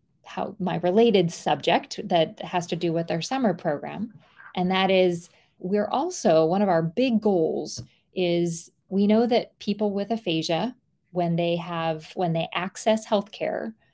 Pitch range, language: 165-215 Hz, English